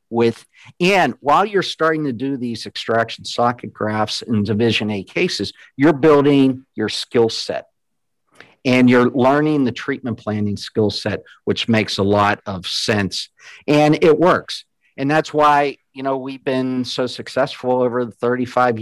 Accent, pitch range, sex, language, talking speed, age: American, 110-130 Hz, male, English, 155 wpm, 50-69